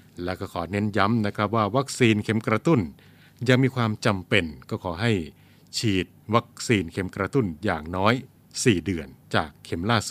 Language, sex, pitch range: Thai, male, 95-120 Hz